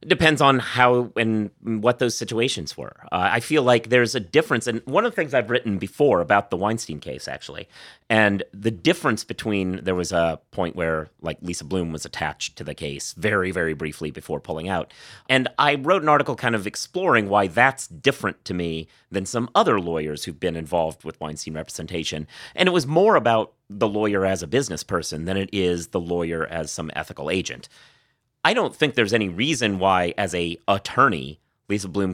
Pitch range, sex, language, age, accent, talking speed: 90-115 Hz, male, English, 30-49, American, 200 wpm